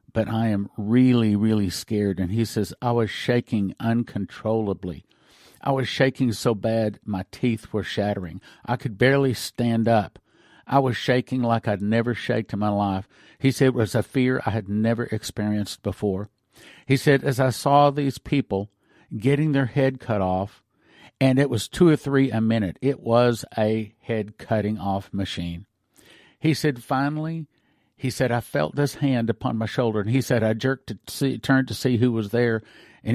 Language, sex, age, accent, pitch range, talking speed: English, male, 50-69, American, 105-135 Hz, 185 wpm